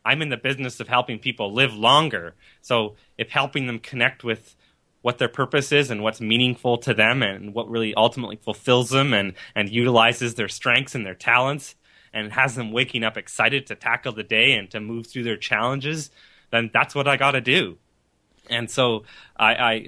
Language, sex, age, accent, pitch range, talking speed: English, male, 20-39, American, 110-130 Hz, 195 wpm